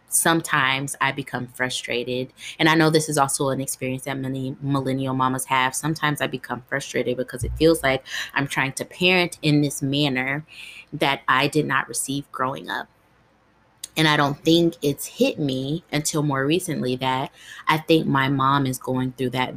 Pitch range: 130-155 Hz